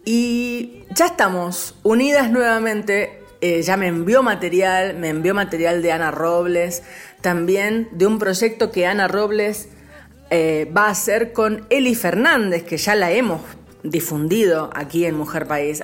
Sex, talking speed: female, 150 wpm